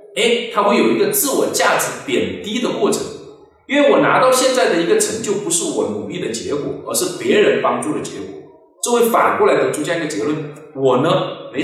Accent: native